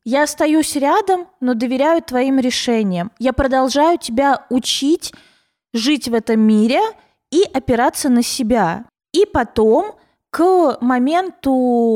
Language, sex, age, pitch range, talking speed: Russian, female, 20-39, 225-295 Hz, 115 wpm